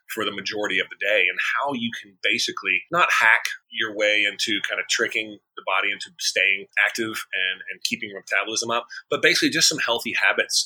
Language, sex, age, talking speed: English, male, 30-49, 205 wpm